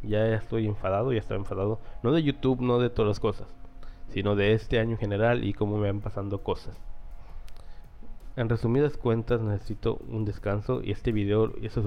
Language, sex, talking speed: Spanish, male, 180 wpm